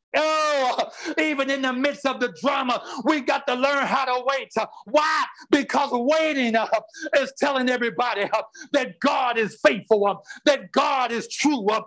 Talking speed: 145 wpm